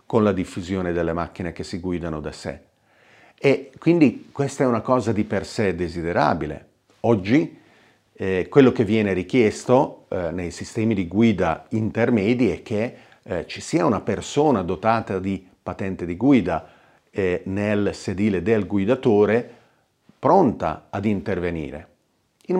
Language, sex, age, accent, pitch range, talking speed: Italian, male, 40-59, native, 90-115 Hz, 140 wpm